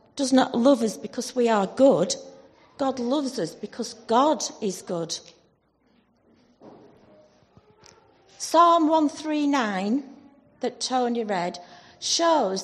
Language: English